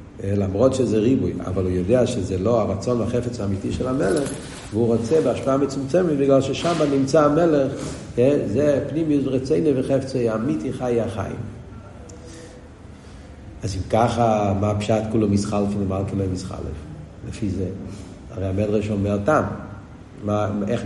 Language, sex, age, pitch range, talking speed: Hebrew, male, 50-69, 95-130 Hz, 125 wpm